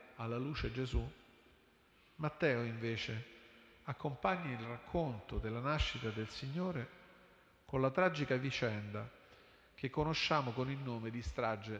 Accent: native